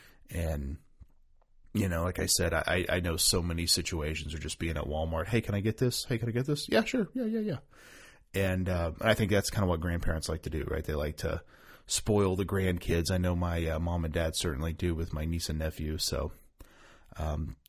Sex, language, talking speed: male, English, 225 wpm